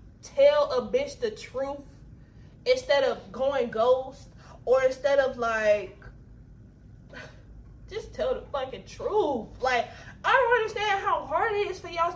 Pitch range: 270-380 Hz